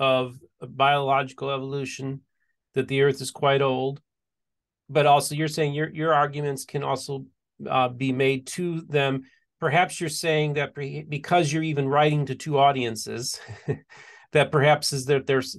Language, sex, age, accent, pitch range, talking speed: English, male, 40-59, American, 135-165 Hz, 150 wpm